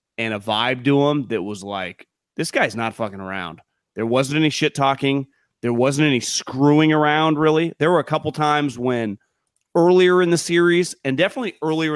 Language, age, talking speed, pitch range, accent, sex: English, 30-49, 185 wpm, 115-155 Hz, American, male